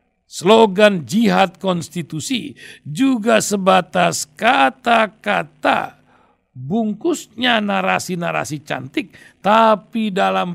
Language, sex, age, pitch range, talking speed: Indonesian, male, 60-79, 175-235 Hz, 65 wpm